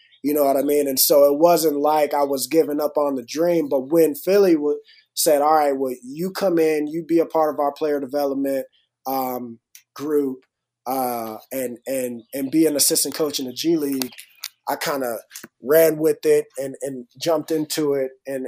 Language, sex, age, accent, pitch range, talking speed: English, male, 20-39, American, 135-160 Hz, 200 wpm